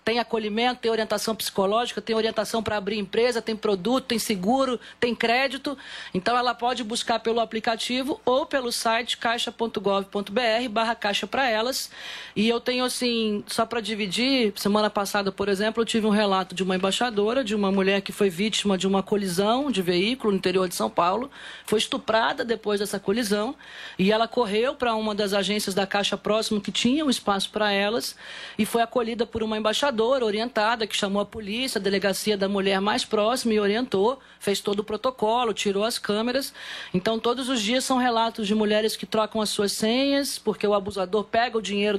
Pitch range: 200-235 Hz